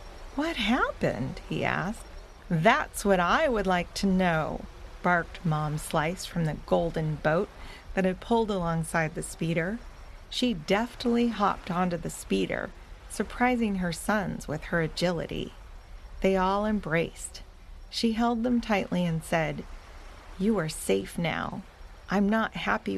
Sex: female